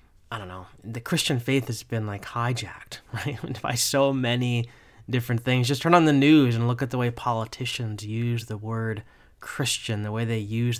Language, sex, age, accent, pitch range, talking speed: English, male, 20-39, American, 105-135 Hz, 195 wpm